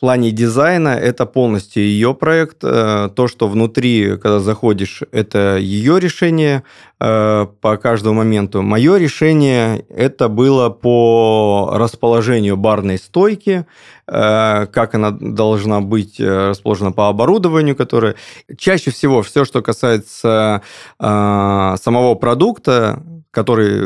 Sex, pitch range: male, 105-130 Hz